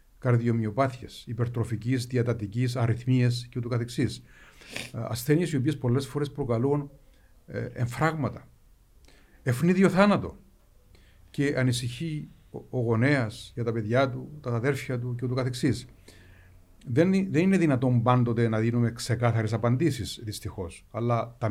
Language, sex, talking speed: Greek, male, 115 wpm